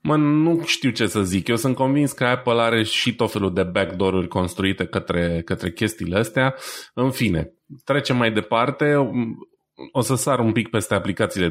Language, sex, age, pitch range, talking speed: Romanian, male, 20-39, 90-120 Hz, 170 wpm